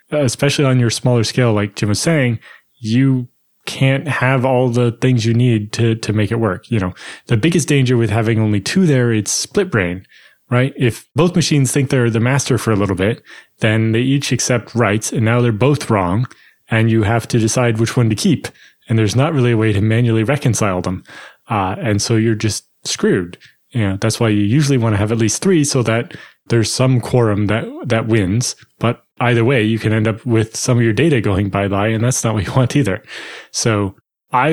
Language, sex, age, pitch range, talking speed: English, male, 20-39, 110-135 Hz, 215 wpm